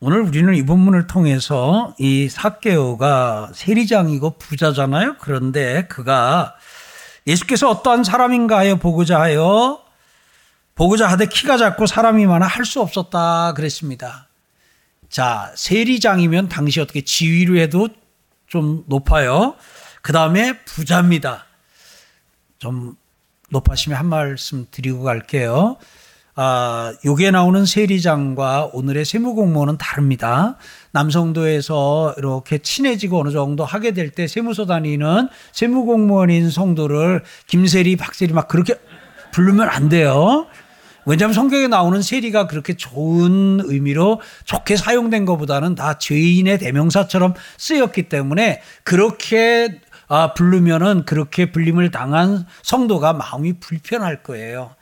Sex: male